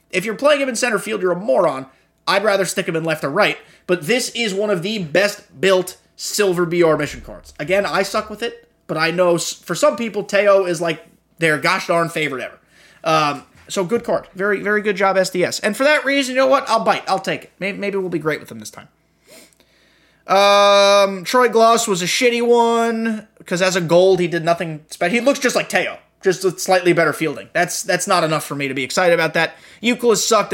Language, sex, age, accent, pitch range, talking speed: English, male, 20-39, American, 170-215 Hz, 230 wpm